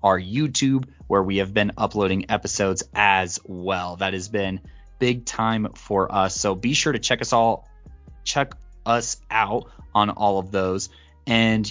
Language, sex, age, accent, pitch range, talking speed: English, male, 20-39, American, 100-125 Hz, 165 wpm